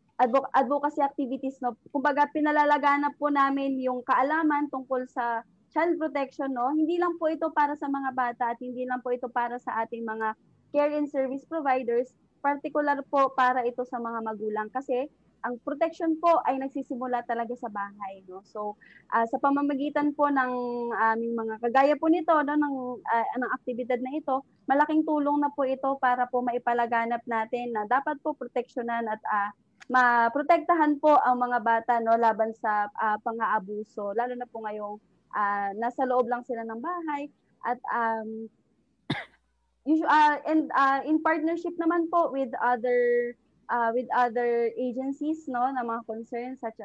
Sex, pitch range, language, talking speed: female, 235-285 Hz, Filipino, 165 wpm